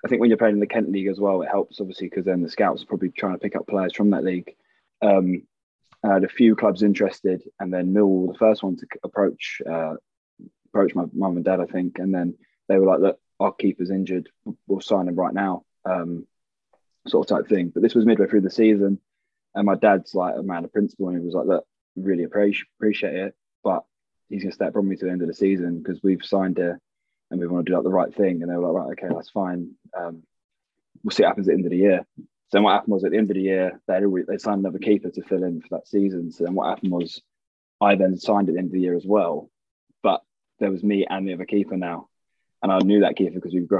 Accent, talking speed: British, 265 wpm